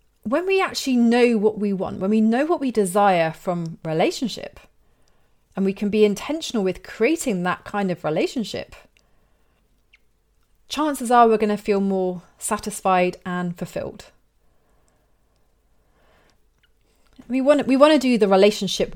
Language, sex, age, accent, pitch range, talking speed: English, female, 30-49, British, 185-230 Hz, 140 wpm